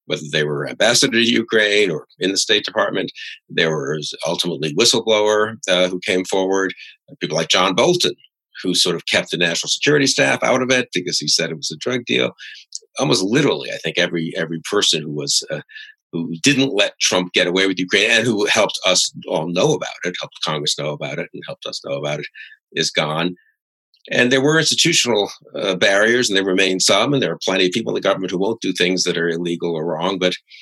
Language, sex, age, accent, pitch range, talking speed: English, male, 50-69, American, 85-140 Hz, 215 wpm